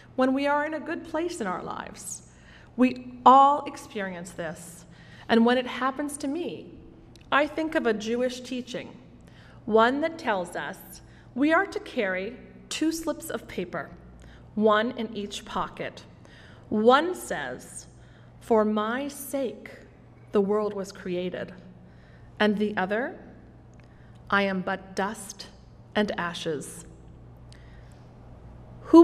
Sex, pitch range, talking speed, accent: female, 200-275 Hz, 125 wpm, American